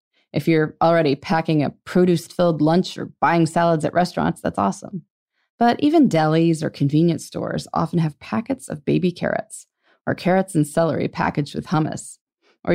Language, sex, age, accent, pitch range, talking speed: English, female, 20-39, American, 155-230 Hz, 160 wpm